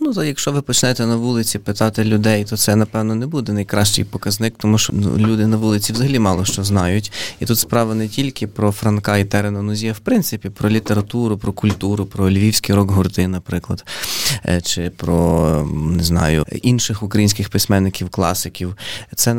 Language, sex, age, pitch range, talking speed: Ukrainian, male, 20-39, 95-110 Hz, 165 wpm